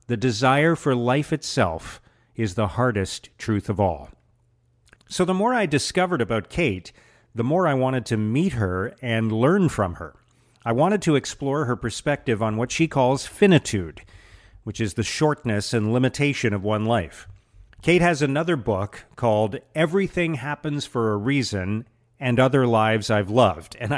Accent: American